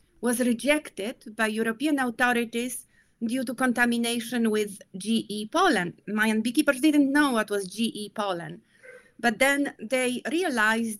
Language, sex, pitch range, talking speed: English, female, 210-265 Hz, 125 wpm